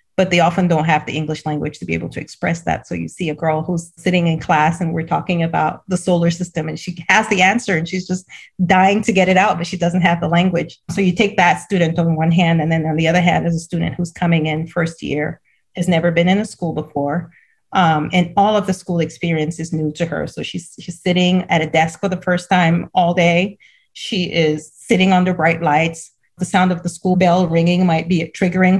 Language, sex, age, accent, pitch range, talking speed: English, female, 30-49, American, 160-185 Hz, 245 wpm